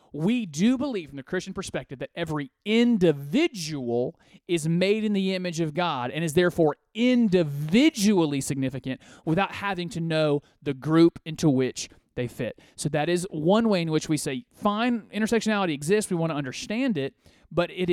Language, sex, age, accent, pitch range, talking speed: English, male, 30-49, American, 145-205 Hz, 170 wpm